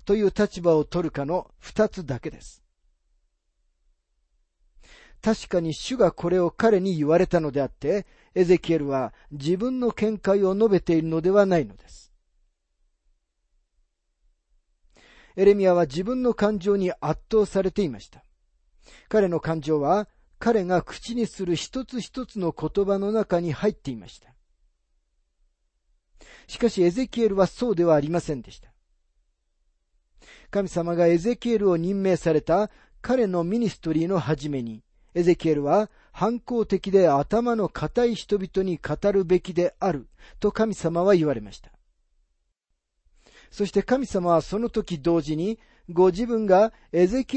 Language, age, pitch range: Japanese, 40-59, 130-205 Hz